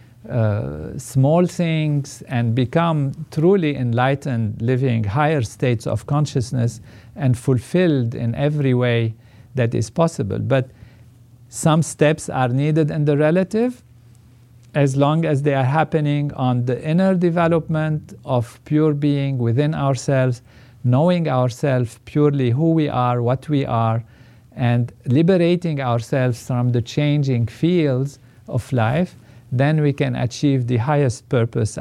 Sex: male